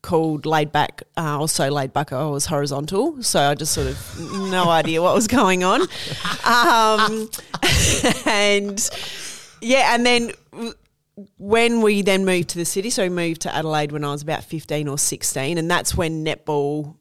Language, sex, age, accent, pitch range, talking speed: English, female, 30-49, Australian, 145-175 Hz, 175 wpm